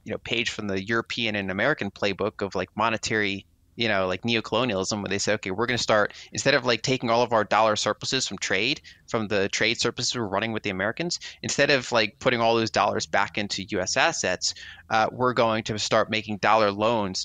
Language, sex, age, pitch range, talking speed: English, male, 30-49, 100-115 Hz, 220 wpm